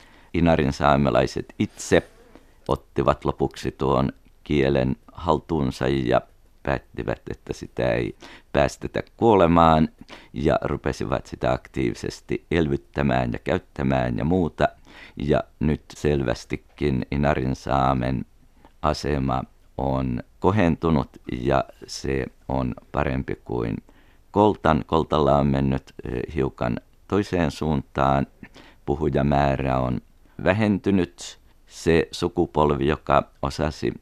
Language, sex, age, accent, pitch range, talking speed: Finnish, male, 50-69, native, 65-80 Hz, 90 wpm